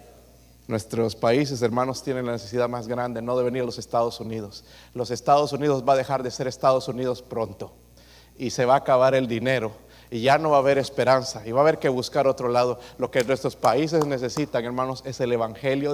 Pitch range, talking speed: 100-160 Hz, 215 wpm